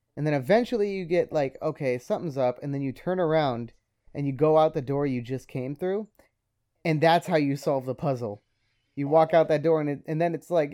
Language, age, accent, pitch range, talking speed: English, 30-49, American, 120-160 Hz, 235 wpm